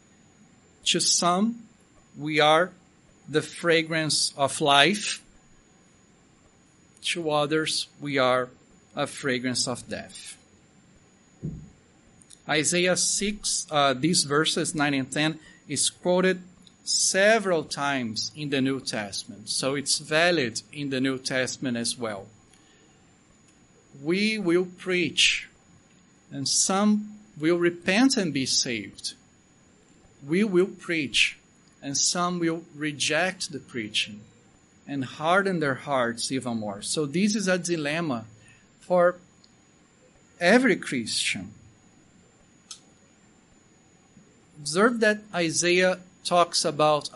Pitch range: 140-180 Hz